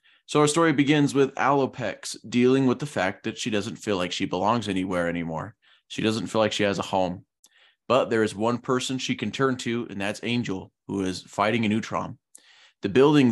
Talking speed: 205 wpm